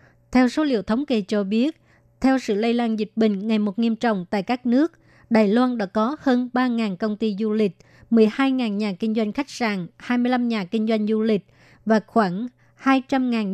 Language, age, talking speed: Vietnamese, 20-39, 200 wpm